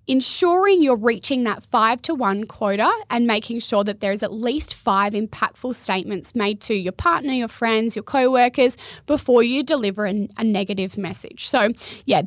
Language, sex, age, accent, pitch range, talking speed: English, female, 20-39, Australian, 210-270 Hz, 170 wpm